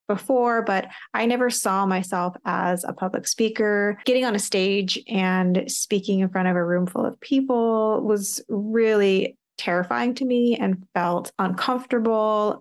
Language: English